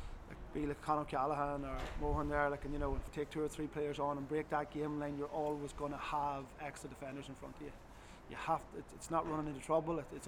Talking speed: 275 wpm